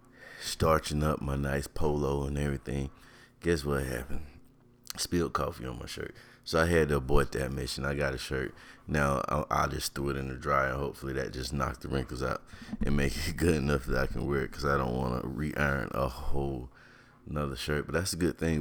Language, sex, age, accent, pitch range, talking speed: English, male, 30-49, American, 70-85 Hz, 225 wpm